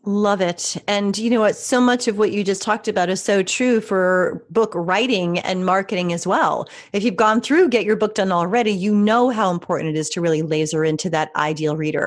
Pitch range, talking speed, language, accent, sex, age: 180-245 Hz, 230 wpm, English, American, female, 30-49